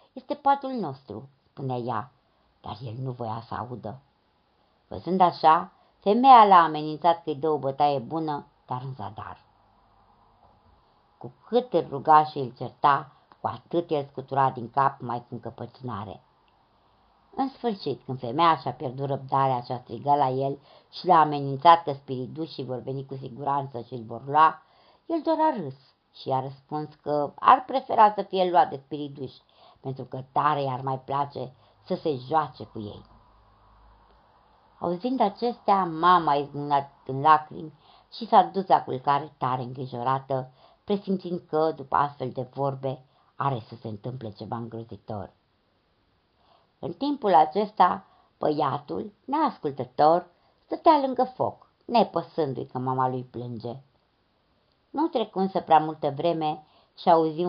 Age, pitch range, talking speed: 60-79, 125-170 Hz, 145 wpm